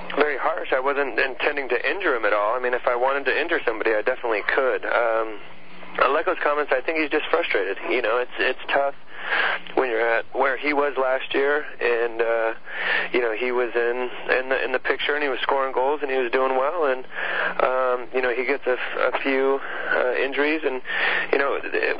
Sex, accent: male, American